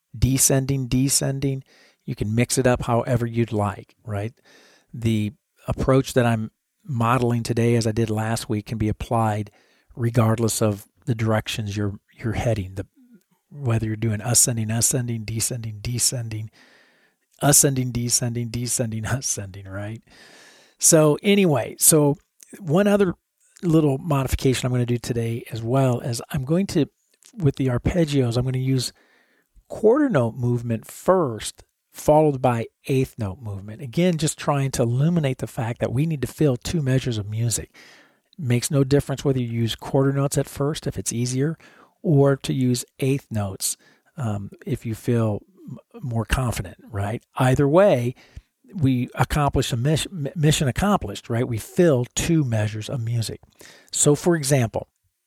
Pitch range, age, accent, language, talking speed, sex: 115-145 Hz, 50-69, American, English, 155 wpm, male